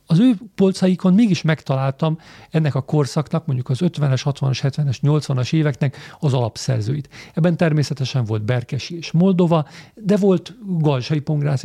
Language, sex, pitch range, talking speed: Hungarian, male, 135-165 Hz, 140 wpm